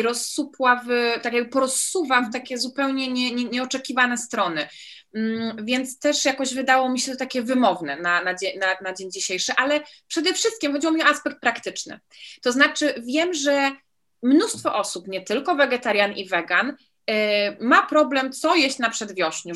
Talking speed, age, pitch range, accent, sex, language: 155 wpm, 20-39, 210-285 Hz, native, female, Polish